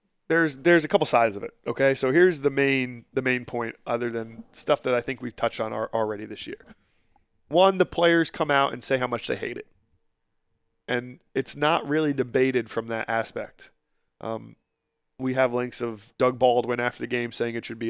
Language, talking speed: English, 210 wpm